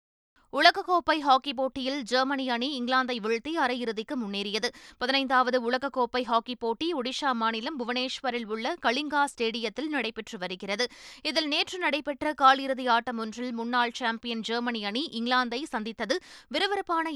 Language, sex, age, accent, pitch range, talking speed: Tamil, female, 20-39, native, 235-275 Hz, 120 wpm